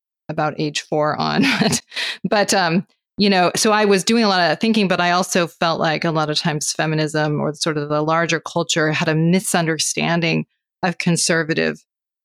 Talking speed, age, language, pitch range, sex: 180 wpm, 30-49, English, 160-200 Hz, female